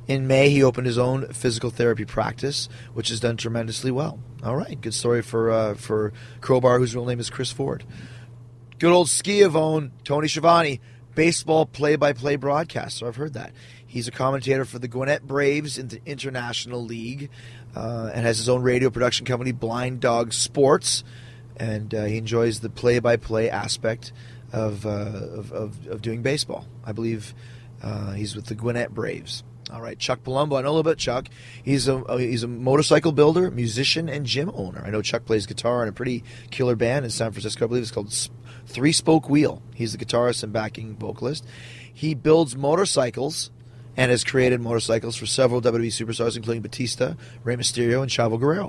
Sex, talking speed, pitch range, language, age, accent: male, 185 wpm, 115-130 Hz, English, 30-49, American